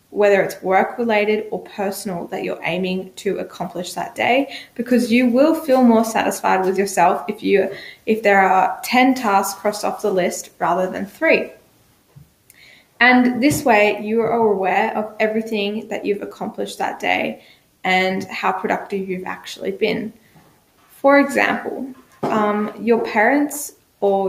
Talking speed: 150 wpm